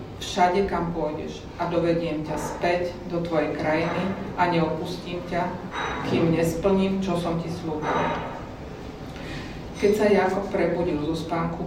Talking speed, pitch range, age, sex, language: 130 wpm, 160-180 Hz, 40-59, female, Slovak